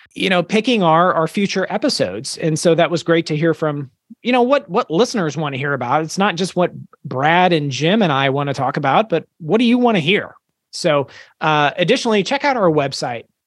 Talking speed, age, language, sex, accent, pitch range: 225 wpm, 30-49, English, male, American, 155-195 Hz